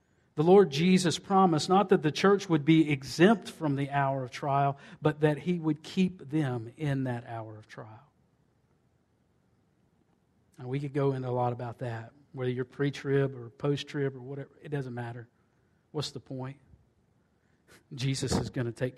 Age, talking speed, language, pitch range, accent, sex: 50-69, 170 wpm, English, 135-170 Hz, American, male